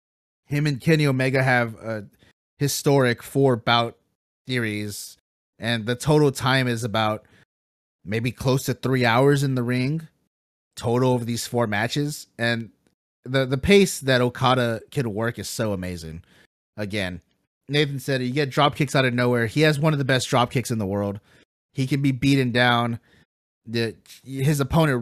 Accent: American